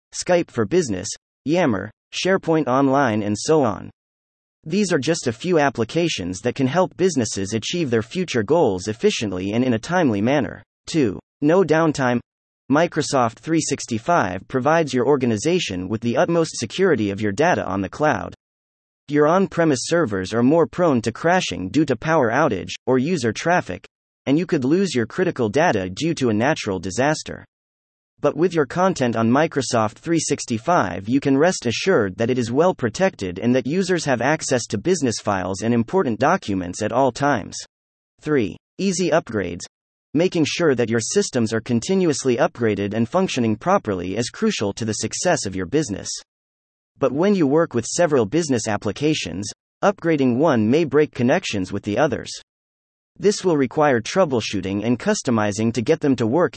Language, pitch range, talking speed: English, 105-165 Hz, 160 wpm